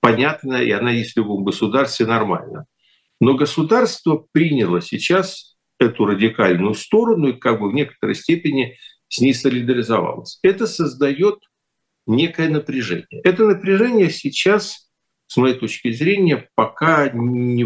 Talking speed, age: 125 wpm, 50-69